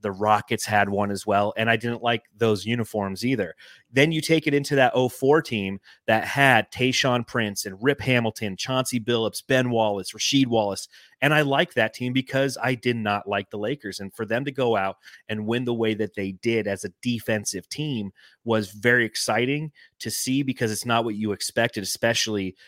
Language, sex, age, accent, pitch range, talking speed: English, male, 30-49, American, 105-130 Hz, 200 wpm